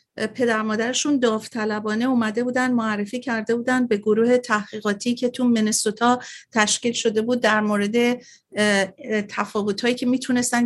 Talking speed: 120 wpm